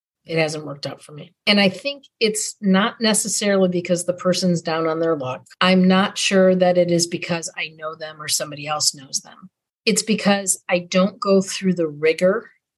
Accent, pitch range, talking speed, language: American, 160-200 Hz, 195 wpm, English